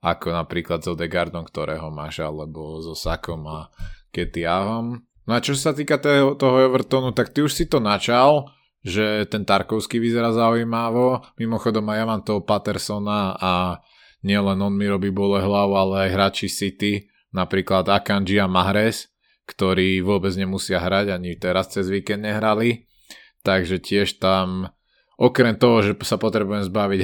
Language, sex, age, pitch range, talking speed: Slovak, male, 20-39, 95-115 Hz, 150 wpm